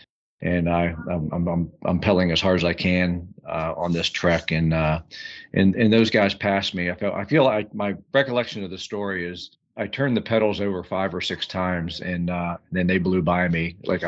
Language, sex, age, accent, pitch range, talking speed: English, male, 40-59, American, 85-110 Hz, 215 wpm